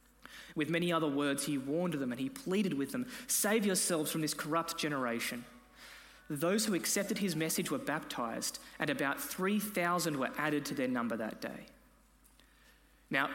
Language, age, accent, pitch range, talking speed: English, 20-39, Australian, 160-245 Hz, 160 wpm